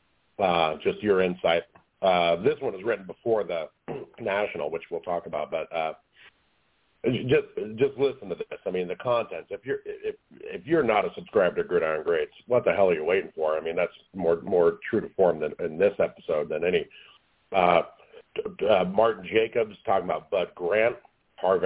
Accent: American